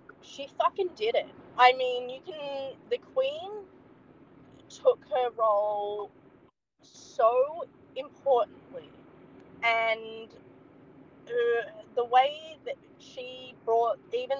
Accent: Australian